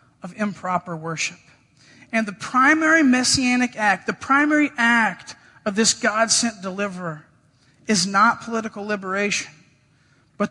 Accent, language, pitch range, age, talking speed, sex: American, English, 160-235 Hz, 40-59, 115 wpm, male